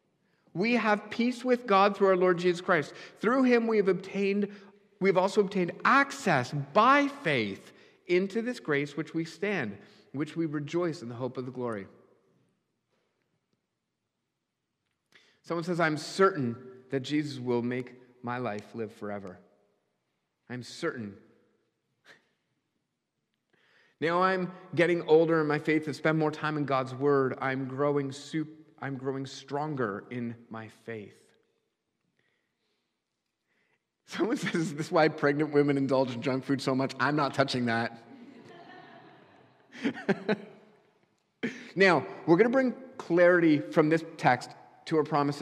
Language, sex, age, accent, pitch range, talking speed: English, male, 40-59, American, 130-185 Hz, 135 wpm